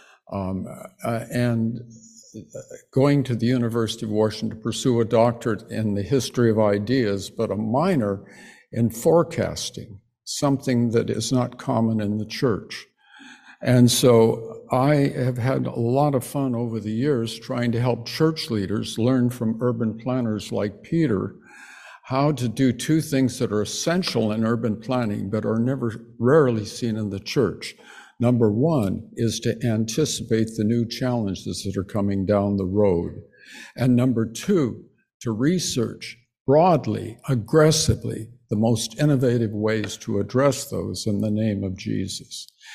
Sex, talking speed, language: male, 150 wpm, English